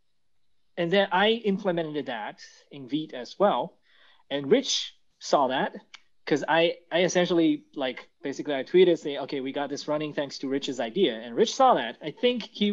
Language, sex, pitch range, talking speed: English, male, 135-200 Hz, 180 wpm